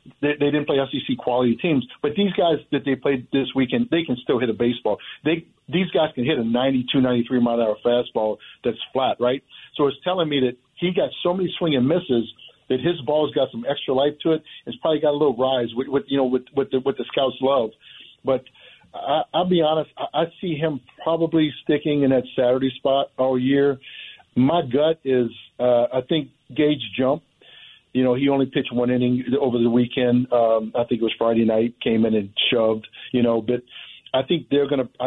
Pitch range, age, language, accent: 125-145 Hz, 50-69, English, American